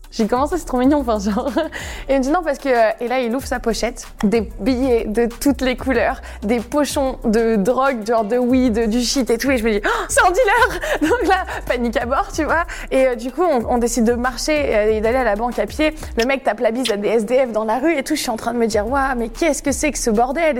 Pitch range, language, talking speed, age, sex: 240-300 Hz, French, 280 wpm, 20-39, female